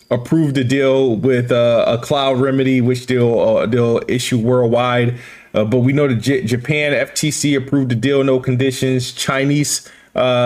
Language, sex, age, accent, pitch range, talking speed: English, male, 20-39, American, 125-145 Hz, 160 wpm